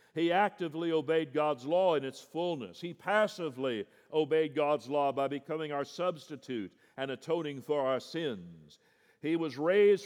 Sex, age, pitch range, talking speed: male, 60-79, 150-200 Hz, 150 wpm